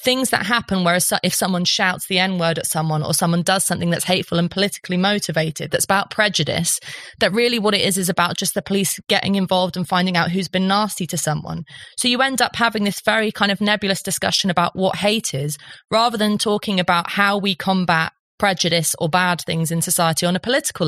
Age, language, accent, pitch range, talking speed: 20-39, English, British, 170-205 Hz, 215 wpm